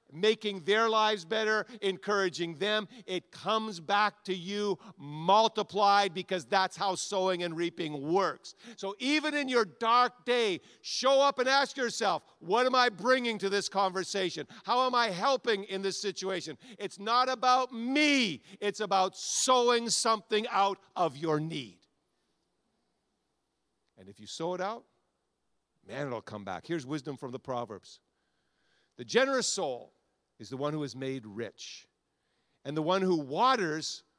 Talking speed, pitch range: 150 wpm, 145-220 Hz